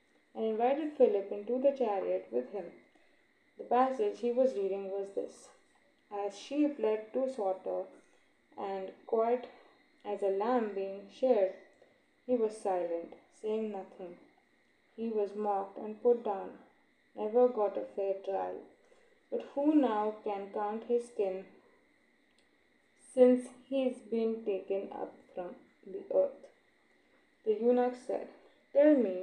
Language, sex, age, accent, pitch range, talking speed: English, female, 20-39, Indian, 200-265 Hz, 130 wpm